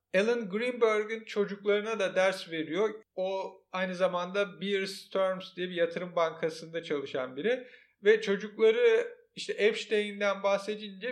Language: Turkish